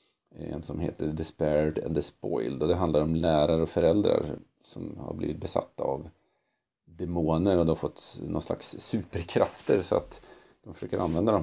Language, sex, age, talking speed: Swedish, male, 40-59, 170 wpm